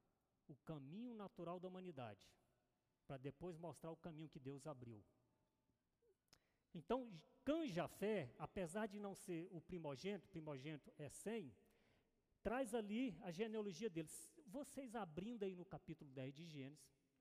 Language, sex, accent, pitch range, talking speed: Portuguese, male, Brazilian, 145-210 Hz, 135 wpm